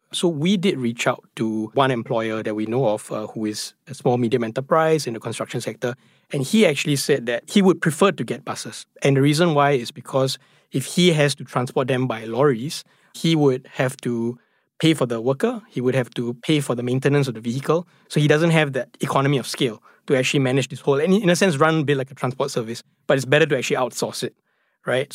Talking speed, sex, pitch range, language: 230 wpm, male, 120-150 Hz, English